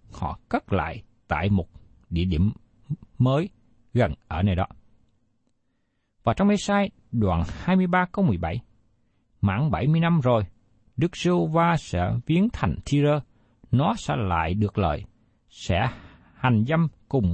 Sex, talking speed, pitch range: male, 135 wpm, 110-165 Hz